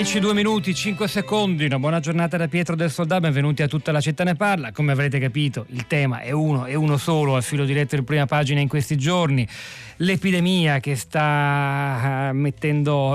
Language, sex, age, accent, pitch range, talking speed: Italian, male, 40-59, native, 125-155 Hz, 190 wpm